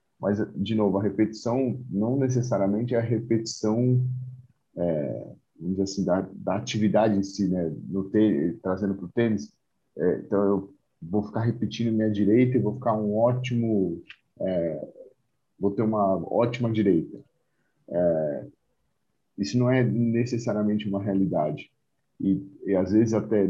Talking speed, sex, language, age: 145 wpm, male, Portuguese, 40-59